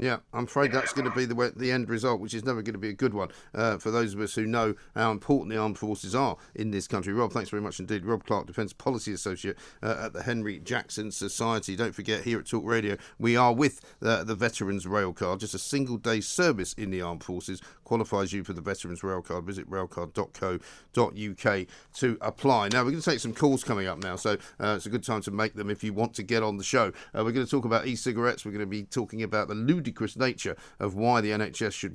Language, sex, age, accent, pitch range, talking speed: English, male, 50-69, British, 105-135 Hz, 250 wpm